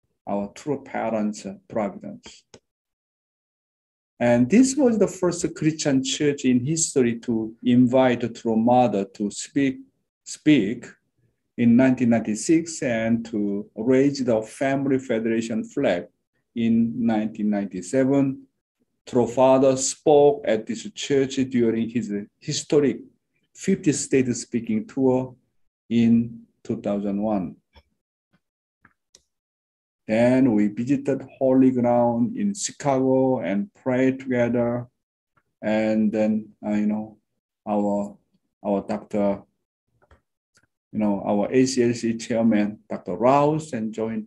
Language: English